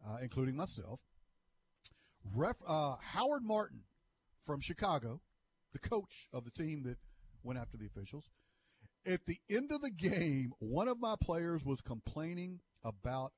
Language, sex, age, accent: English, male, 50-69, American